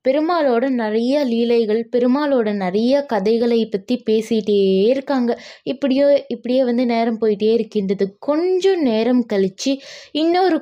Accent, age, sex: native, 20-39, female